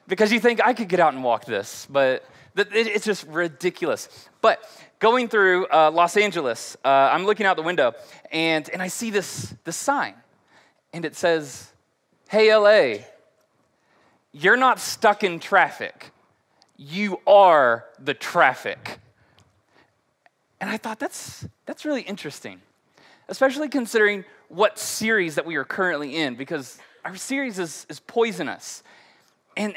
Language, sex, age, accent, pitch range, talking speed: English, male, 20-39, American, 185-240 Hz, 140 wpm